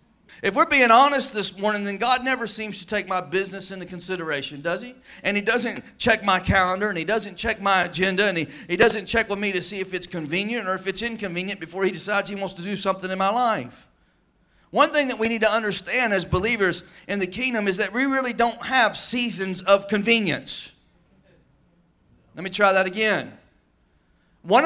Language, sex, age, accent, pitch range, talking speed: English, male, 40-59, American, 190-240 Hz, 205 wpm